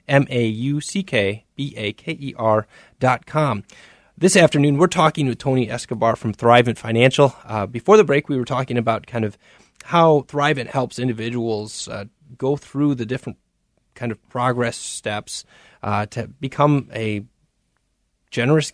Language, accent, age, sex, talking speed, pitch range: English, American, 30-49, male, 130 wpm, 110-135 Hz